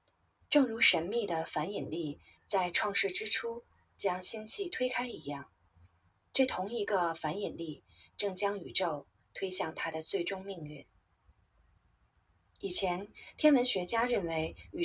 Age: 30-49